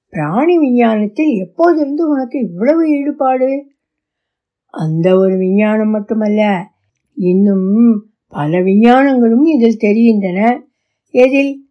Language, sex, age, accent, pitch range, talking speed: Tamil, female, 60-79, native, 205-260 Hz, 80 wpm